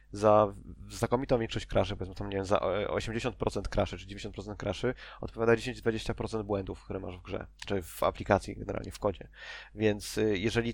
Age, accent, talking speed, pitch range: 20-39, native, 145 wpm, 100-115 Hz